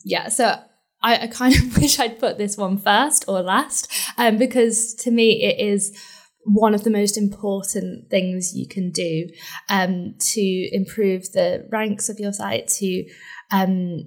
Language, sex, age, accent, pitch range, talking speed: English, female, 10-29, British, 185-225 Hz, 165 wpm